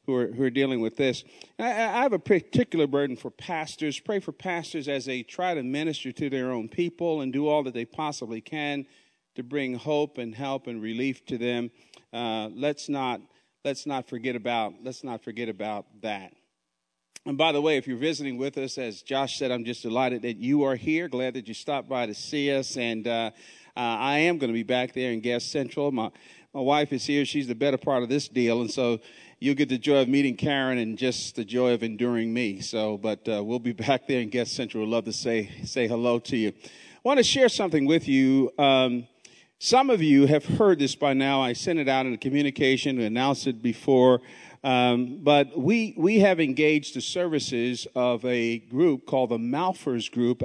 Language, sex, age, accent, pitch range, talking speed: English, male, 40-59, American, 120-145 Hz, 220 wpm